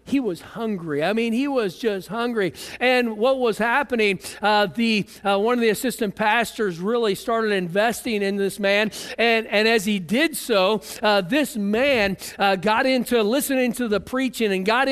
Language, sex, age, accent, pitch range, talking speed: English, male, 50-69, American, 180-240 Hz, 180 wpm